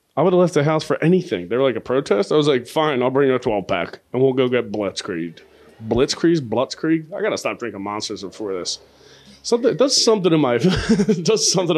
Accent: American